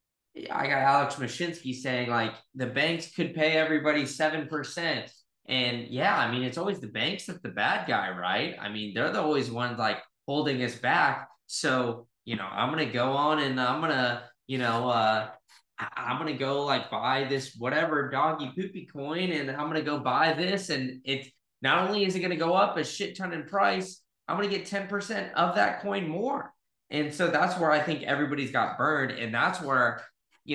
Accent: American